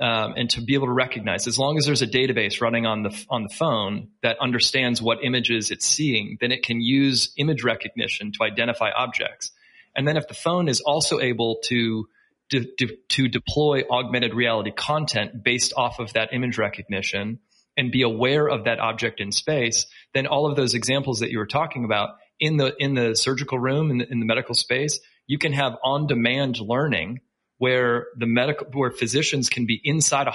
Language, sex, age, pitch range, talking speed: English, male, 30-49, 115-140 Hz, 205 wpm